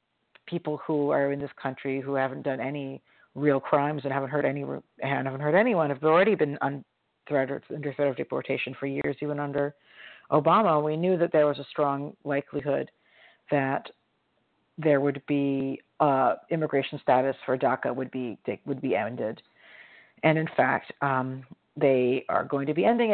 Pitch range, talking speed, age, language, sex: 135-155 Hz, 165 wpm, 50-69, English, female